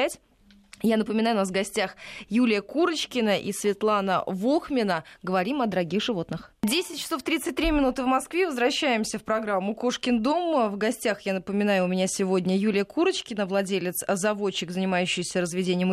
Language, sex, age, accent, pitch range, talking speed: Russian, female, 20-39, native, 185-250 Hz, 145 wpm